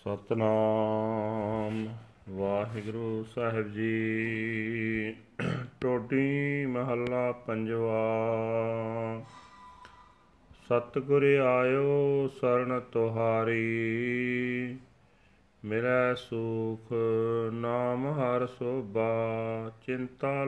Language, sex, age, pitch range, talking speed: Punjabi, male, 30-49, 110-130 Hz, 50 wpm